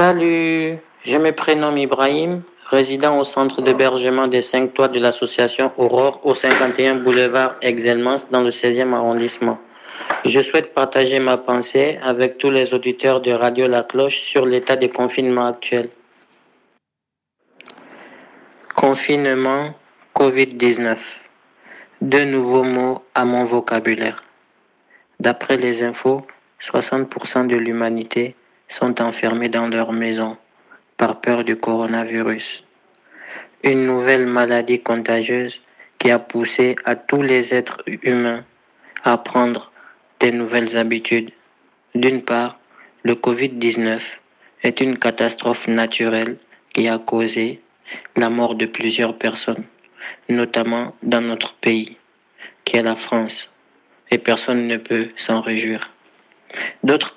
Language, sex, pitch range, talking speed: French, male, 115-130 Hz, 120 wpm